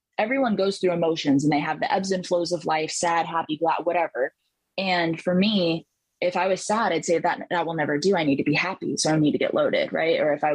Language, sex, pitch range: English, female, 155-180 Hz